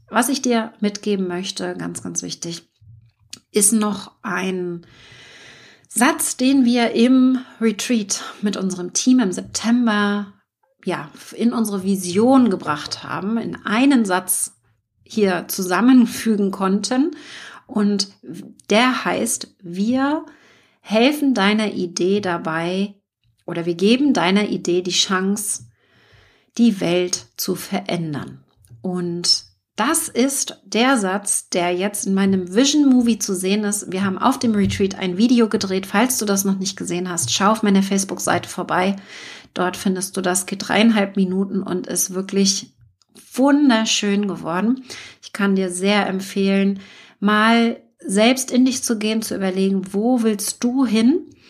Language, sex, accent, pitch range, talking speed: German, female, German, 185-230 Hz, 135 wpm